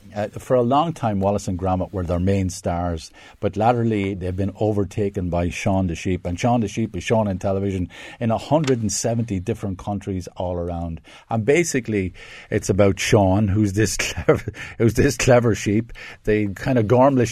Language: English